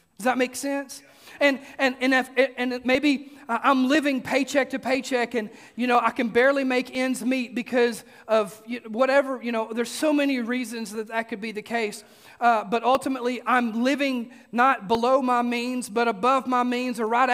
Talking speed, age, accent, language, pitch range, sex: 185 wpm, 30-49, American, English, 250-305 Hz, male